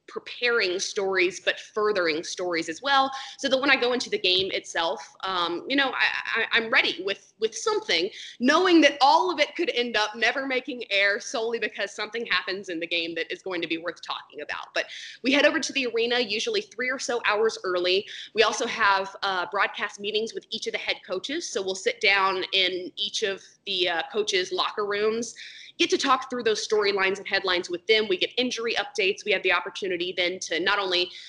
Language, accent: English, American